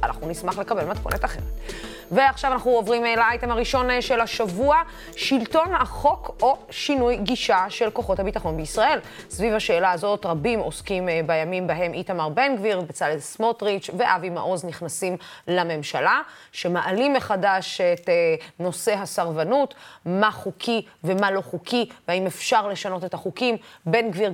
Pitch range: 175-235 Hz